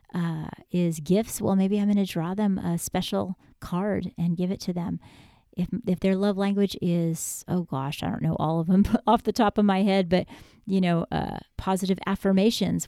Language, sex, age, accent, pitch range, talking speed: English, female, 40-59, American, 175-210 Hz, 205 wpm